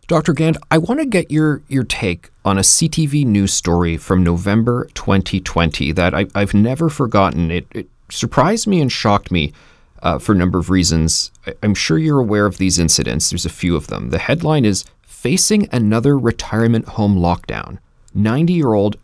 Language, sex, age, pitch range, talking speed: English, male, 30-49, 90-115 Hz, 180 wpm